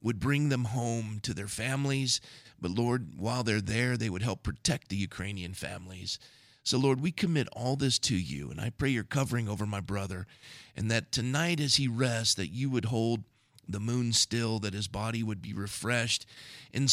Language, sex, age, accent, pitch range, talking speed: English, male, 40-59, American, 105-125 Hz, 195 wpm